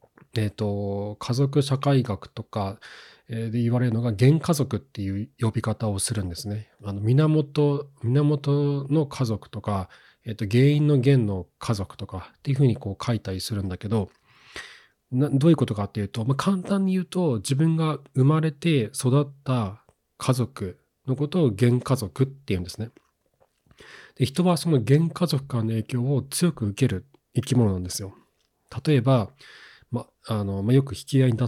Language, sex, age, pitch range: Japanese, male, 40-59, 105-140 Hz